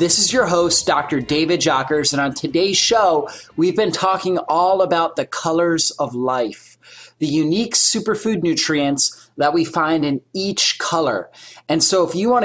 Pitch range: 145-180 Hz